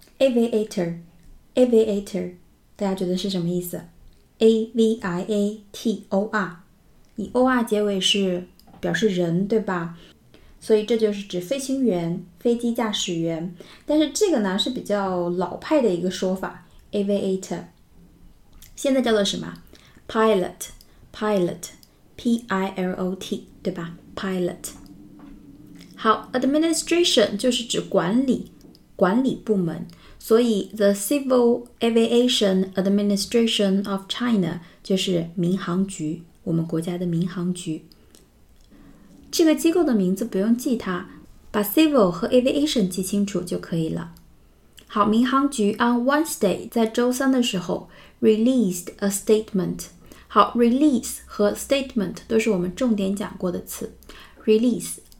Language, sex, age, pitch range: Chinese, female, 20-39, 185-235 Hz